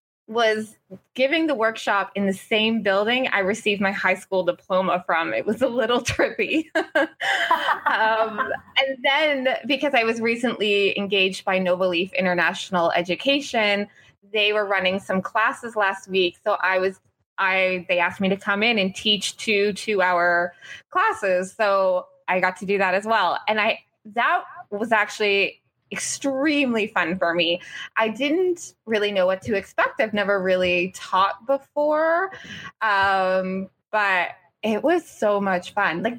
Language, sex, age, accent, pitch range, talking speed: English, female, 20-39, American, 190-255 Hz, 155 wpm